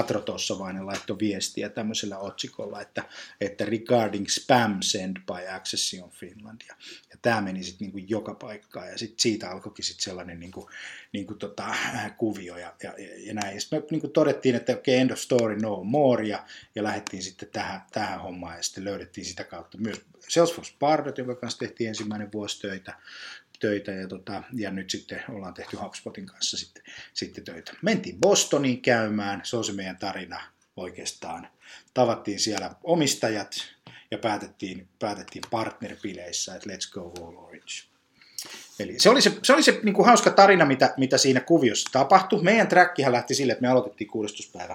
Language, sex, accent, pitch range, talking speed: Finnish, male, native, 100-135 Hz, 160 wpm